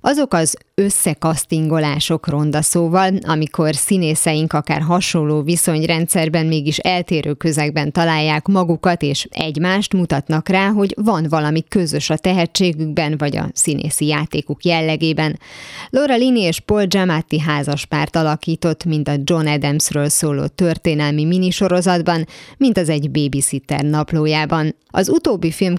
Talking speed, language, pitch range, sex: 120 wpm, Hungarian, 150-175 Hz, female